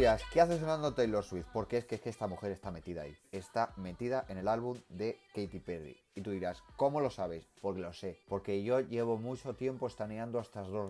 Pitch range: 95-125 Hz